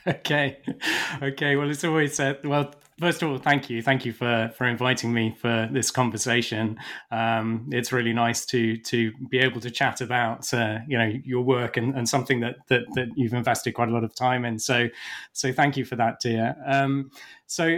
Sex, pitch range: male, 120-140 Hz